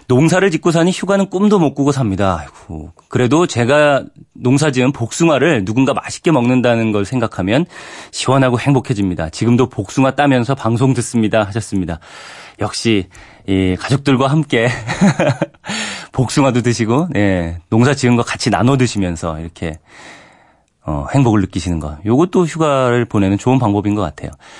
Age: 30-49